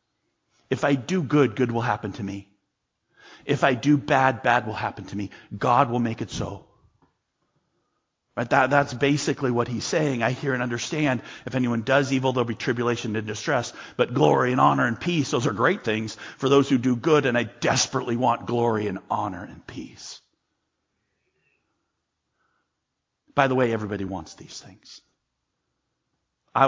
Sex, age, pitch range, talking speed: male, 50-69, 110-155 Hz, 170 wpm